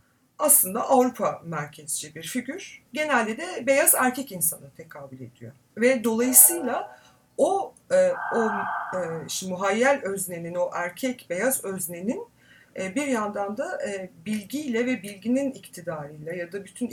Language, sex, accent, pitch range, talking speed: Turkish, female, native, 180-255 Hz, 115 wpm